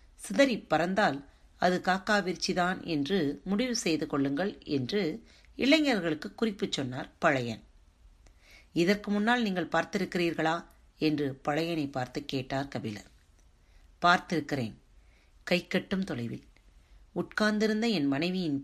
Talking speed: 95 wpm